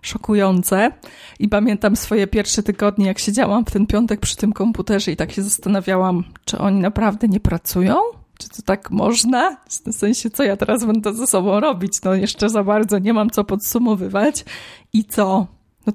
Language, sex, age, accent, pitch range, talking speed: Polish, female, 20-39, native, 200-235 Hz, 175 wpm